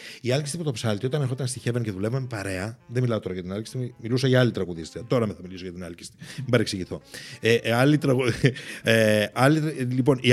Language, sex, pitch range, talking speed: Greek, male, 115-155 Hz, 210 wpm